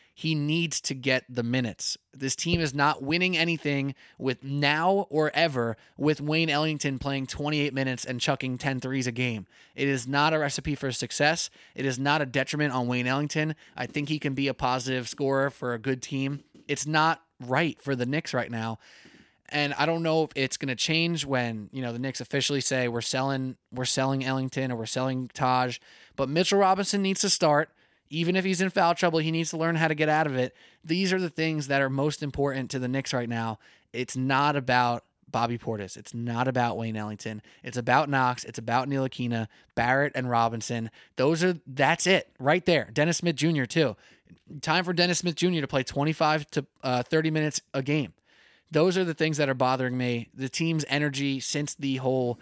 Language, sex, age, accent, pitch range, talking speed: English, male, 20-39, American, 125-155 Hz, 205 wpm